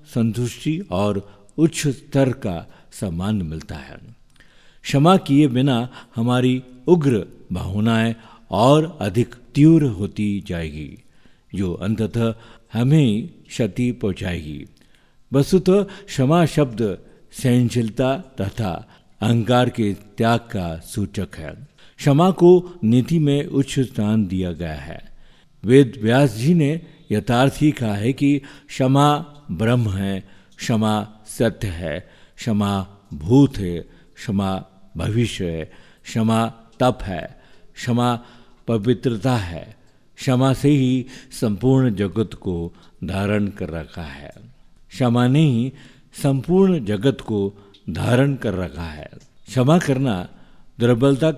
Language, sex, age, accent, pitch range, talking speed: Hindi, male, 50-69, native, 100-135 Hz, 110 wpm